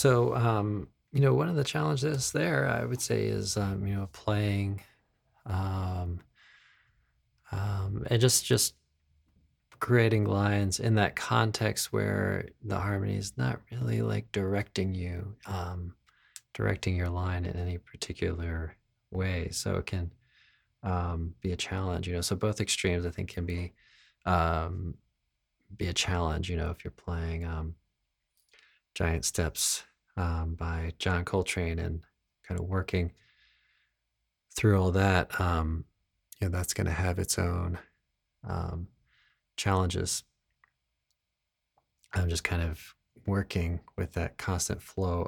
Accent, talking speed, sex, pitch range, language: American, 135 wpm, male, 85-100 Hz, English